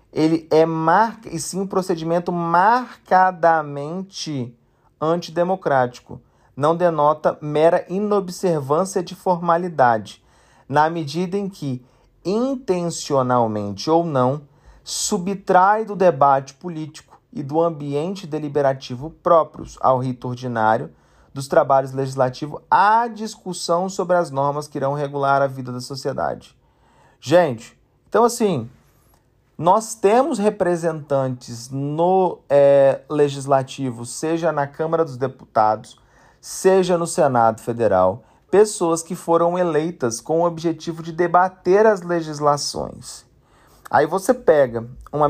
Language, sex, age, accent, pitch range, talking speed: Portuguese, male, 40-59, Brazilian, 135-180 Hz, 105 wpm